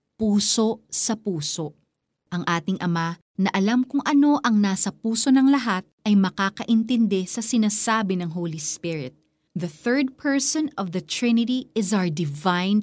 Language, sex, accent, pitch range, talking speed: Filipino, female, native, 170-225 Hz, 145 wpm